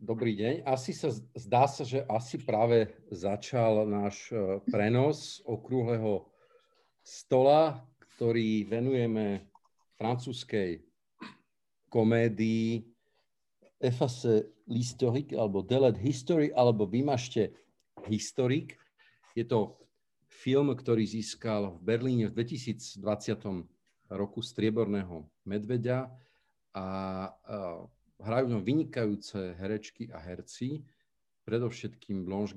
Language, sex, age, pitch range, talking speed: Slovak, male, 50-69, 100-125 Hz, 85 wpm